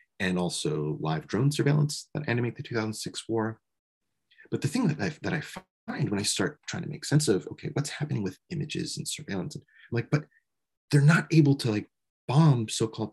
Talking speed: 200 wpm